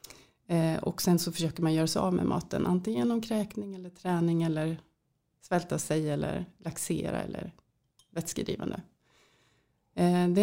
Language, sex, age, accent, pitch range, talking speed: English, female, 30-49, Swedish, 165-195 Hz, 130 wpm